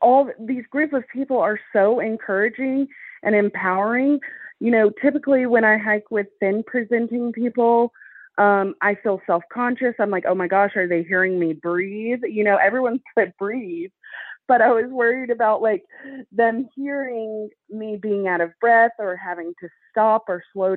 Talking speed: 170 wpm